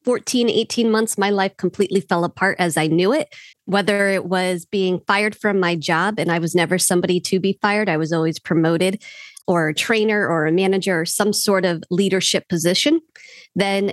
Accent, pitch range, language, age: American, 175-210 Hz, English, 40-59